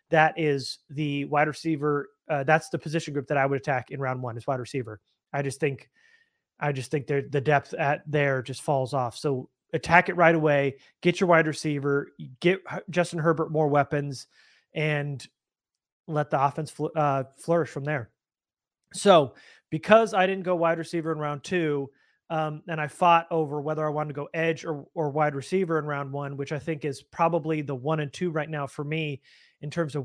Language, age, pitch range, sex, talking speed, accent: English, 30-49, 145-170 Hz, male, 200 wpm, American